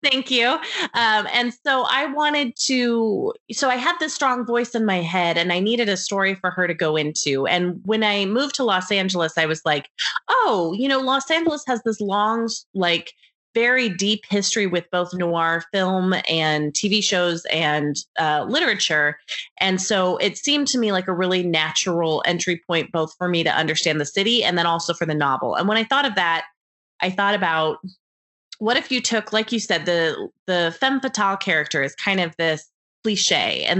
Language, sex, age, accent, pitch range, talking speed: English, female, 30-49, American, 170-235 Hz, 195 wpm